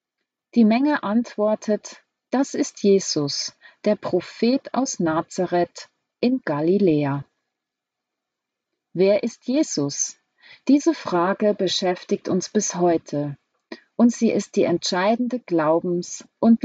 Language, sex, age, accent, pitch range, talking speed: German, female, 40-59, German, 165-225 Hz, 100 wpm